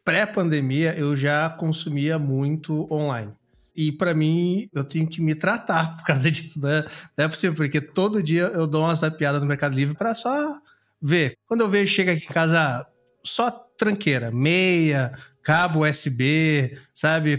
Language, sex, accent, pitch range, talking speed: Portuguese, male, Brazilian, 145-195 Hz, 170 wpm